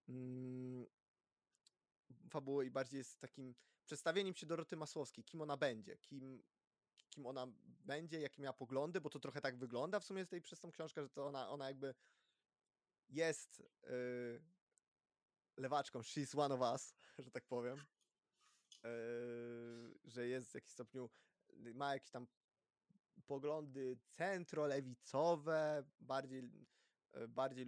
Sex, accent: male, native